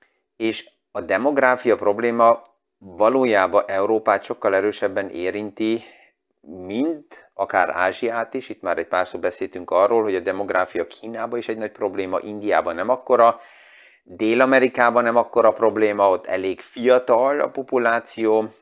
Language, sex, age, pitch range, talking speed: Hungarian, male, 30-49, 105-135 Hz, 130 wpm